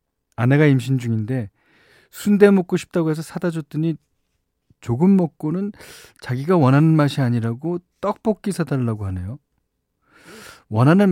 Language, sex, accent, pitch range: Korean, male, native, 115-175 Hz